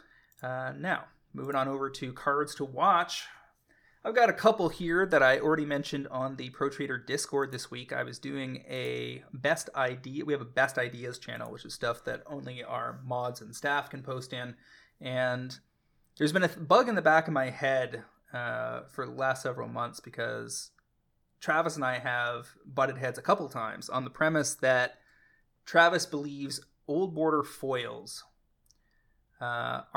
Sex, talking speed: male, 170 wpm